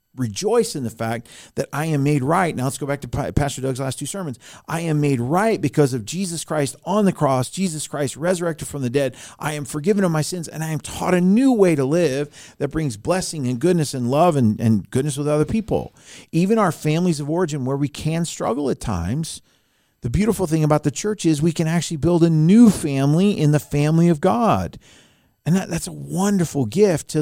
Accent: American